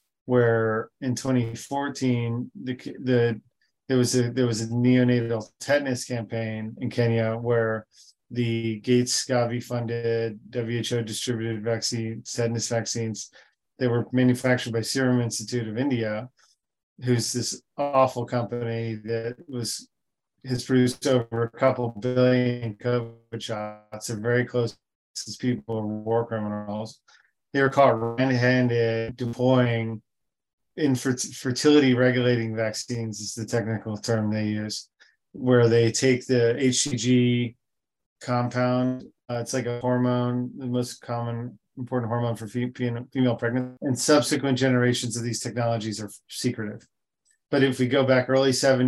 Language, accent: English, American